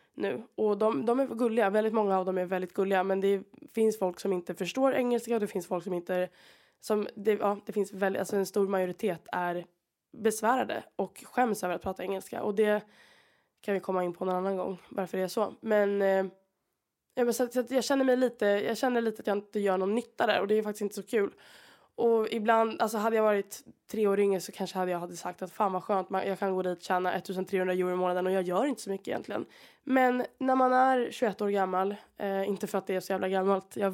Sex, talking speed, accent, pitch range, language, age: female, 245 wpm, Norwegian, 185-225 Hz, Swedish, 20-39